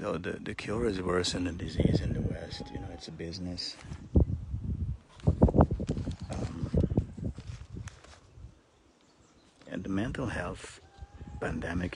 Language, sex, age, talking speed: English, male, 50-69, 120 wpm